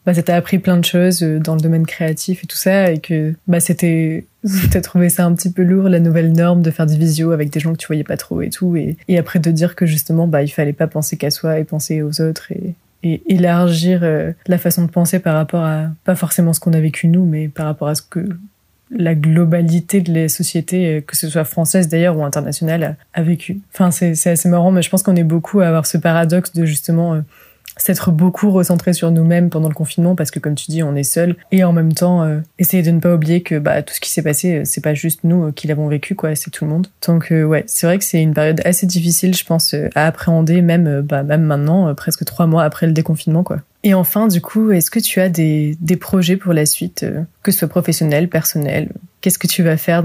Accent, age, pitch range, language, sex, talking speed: French, 20-39, 160-180 Hz, French, female, 260 wpm